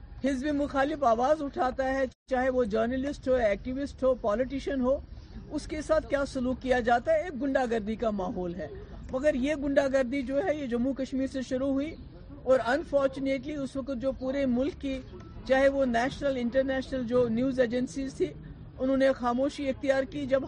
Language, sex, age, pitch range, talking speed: Urdu, female, 50-69, 235-275 Hz, 180 wpm